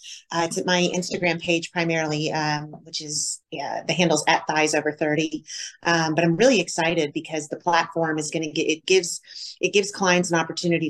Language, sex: English, female